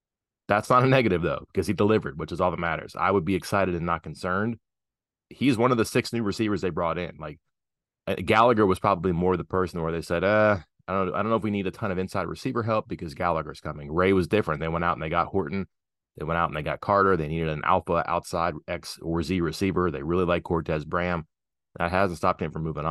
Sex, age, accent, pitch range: male, 30-49, American, 80-95 Hz